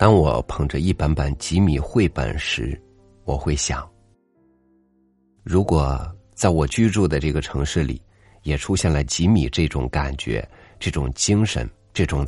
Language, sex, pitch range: Chinese, male, 75-100 Hz